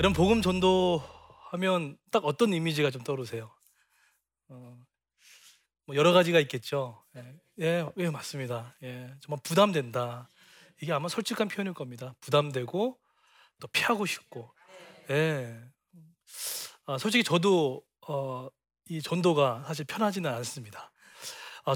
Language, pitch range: Korean, 130-175 Hz